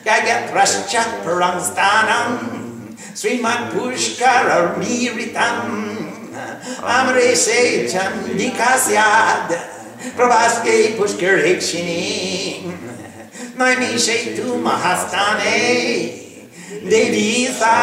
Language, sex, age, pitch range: English, male, 60-79, 215-260 Hz